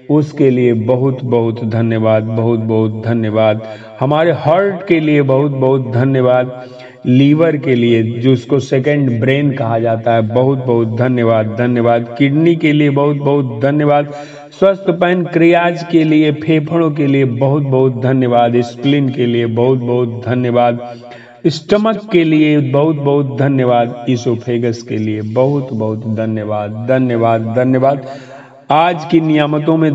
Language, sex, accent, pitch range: Hindi, male, native, 120-150 Hz